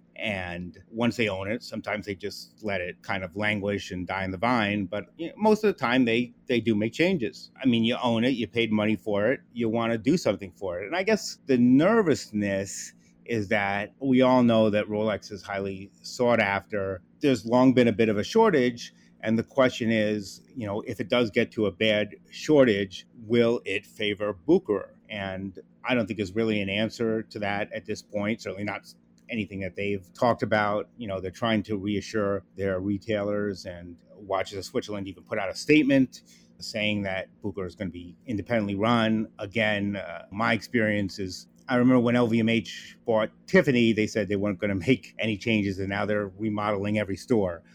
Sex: male